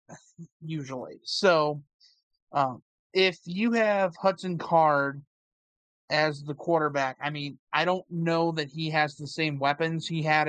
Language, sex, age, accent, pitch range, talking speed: English, male, 30-49, American, 140-170 Hz, 135 wpm